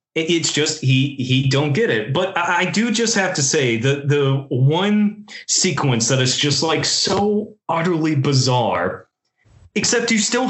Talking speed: 160 wpm